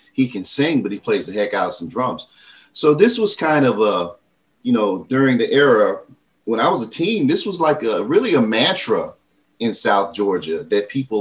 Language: English